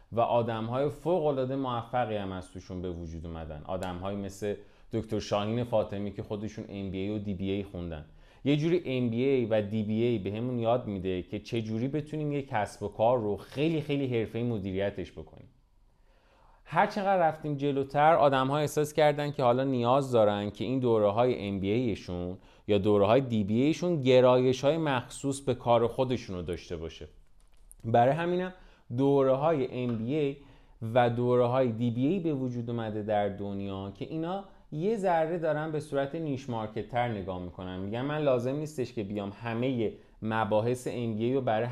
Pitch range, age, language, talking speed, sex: 100-130 Hz, 30-49, Persian, 155 wpm, male